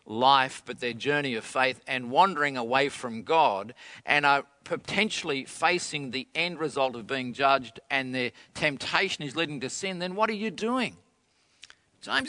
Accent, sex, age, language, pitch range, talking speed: Australian, male, 50-69, English, 130-185 Hz, 165 wpm